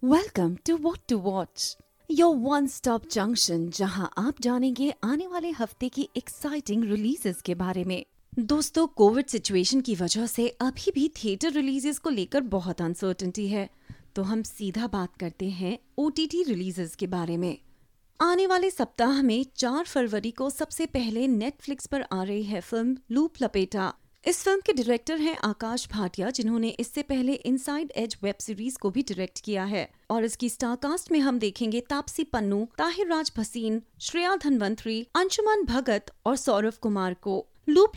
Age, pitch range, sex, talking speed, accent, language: 30-49, 215-305 Hz, female, 165 wpm, native, Hindi